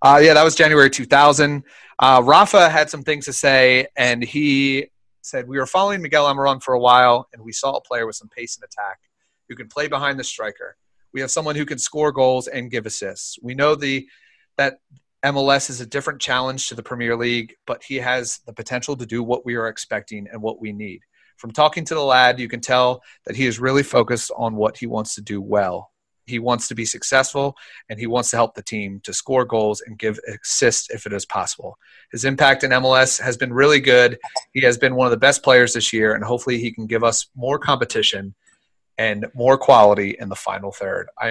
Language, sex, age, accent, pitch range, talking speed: English, male, 30-49, American, 115-140 Hz, 225 wpm